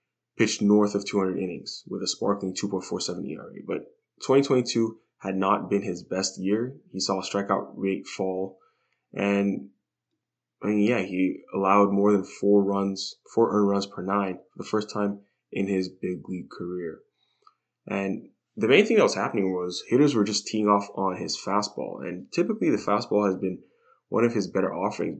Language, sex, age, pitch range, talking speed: English, male, 20-39, 95-105 Hz, 175 wpm